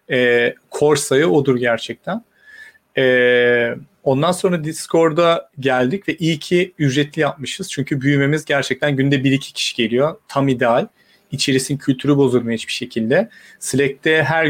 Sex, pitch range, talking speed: male, 130-165 Hz, 130 wpm